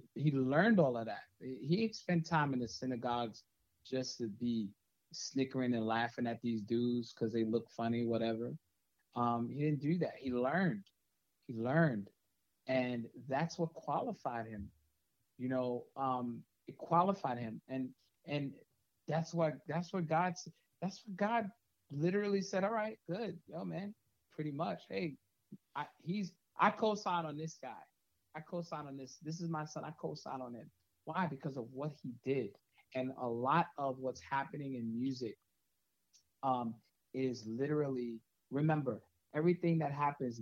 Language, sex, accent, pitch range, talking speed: English, male, American, 115-155 Hz, 155 wpm